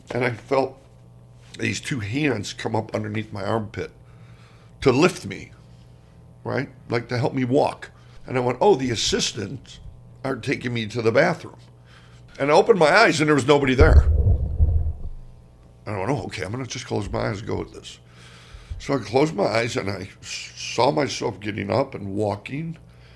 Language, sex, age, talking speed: English, male, 60-79, 185 wpm